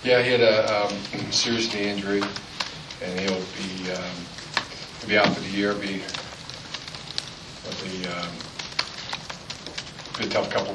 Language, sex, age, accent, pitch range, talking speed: English, male, 40-59, American, 95-100 Hz, 135 wpm